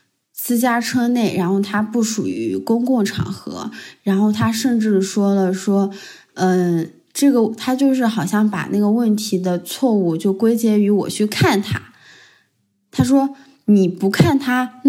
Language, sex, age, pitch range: Chinese, female, 20-39, 180-220 Hz